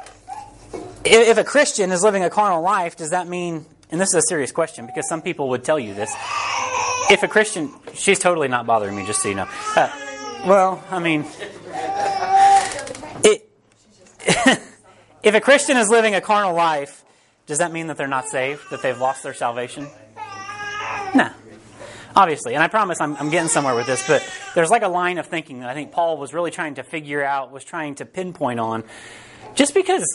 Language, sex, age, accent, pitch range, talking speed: English, male, 30-49, American, 135-195 Hz, 190 wpm